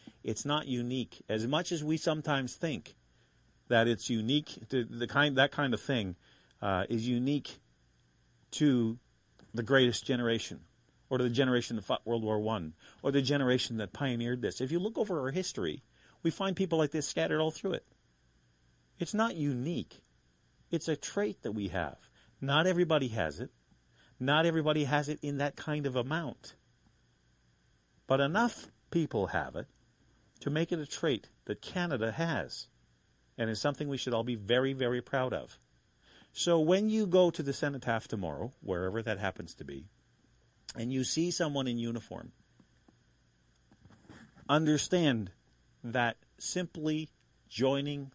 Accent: American